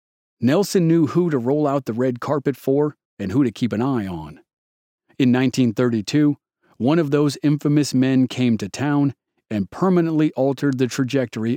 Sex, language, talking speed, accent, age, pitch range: male, English, 165 wpm, American, 40-59, 125-170 Hz